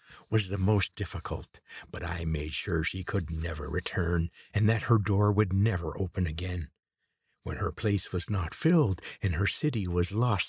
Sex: male